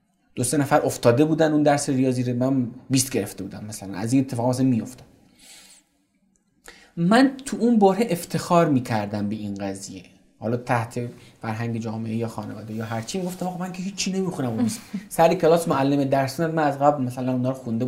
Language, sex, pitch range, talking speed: Persian, male, 125-195 Hz, 185 wpm